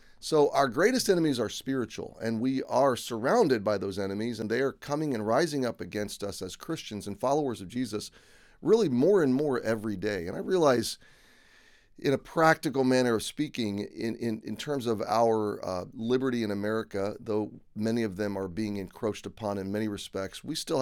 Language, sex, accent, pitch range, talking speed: English, male, American, 100-130 Hz, 190 wpm